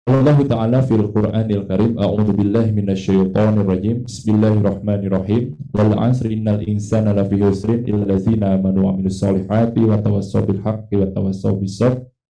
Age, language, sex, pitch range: 20-39, English, male, 100-115 Hz